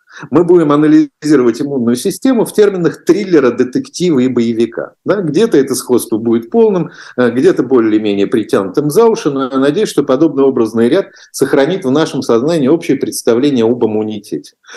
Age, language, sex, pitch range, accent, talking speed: 50-69, Russian, male, 120-175 Hz, native, 145 wpm